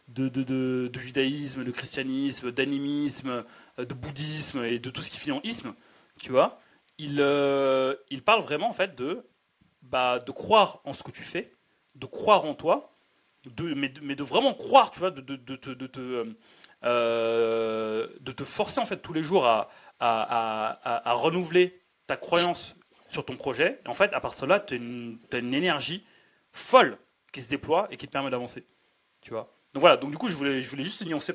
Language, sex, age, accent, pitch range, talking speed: French, male, 30-49, French, 125-160 Hz, 205 wpm